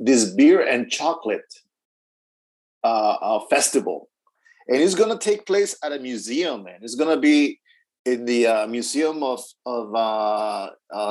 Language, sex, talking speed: English, male, 145 wpm